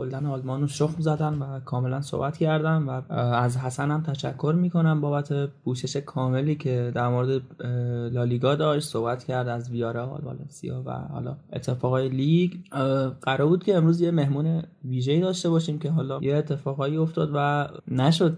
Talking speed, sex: 155 wpm, male